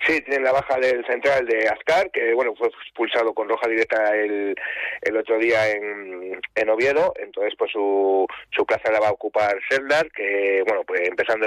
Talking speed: 190 wpm